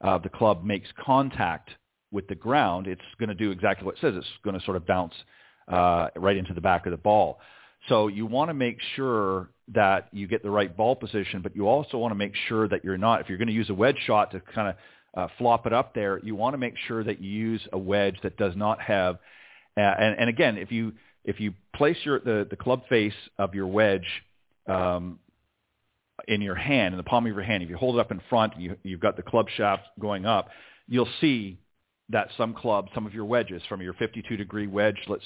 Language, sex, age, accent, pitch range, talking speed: English, male, 40-59, American, 95-115 Hz, 235 wpm